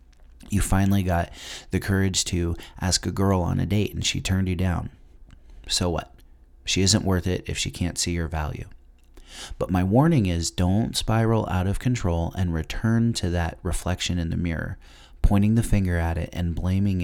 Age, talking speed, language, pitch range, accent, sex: 30-49, 185 wpm, English, 80-95 Hz, American, male